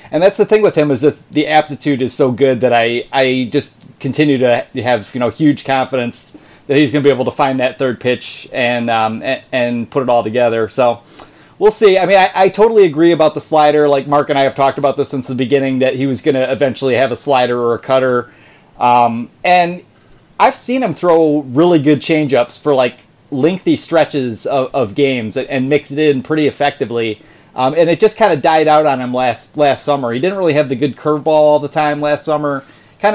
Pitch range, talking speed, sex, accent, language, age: 125-150 Hz, 225 wpm, male, American, English, 30-49